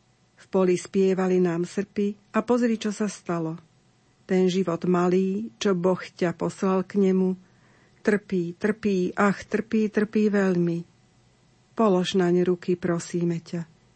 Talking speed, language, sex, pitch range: 130 wpm, Slovak, female, 175-205 Hz